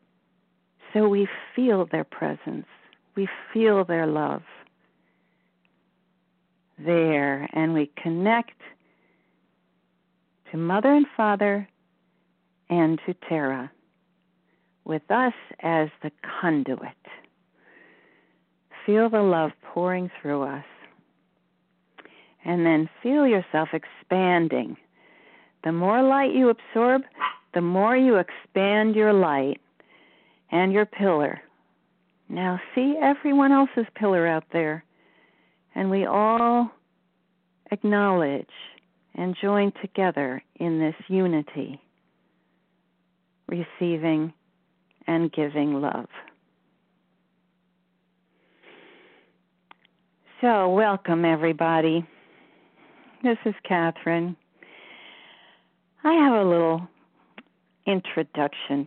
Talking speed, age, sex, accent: 85 wpm, 50-69, female, American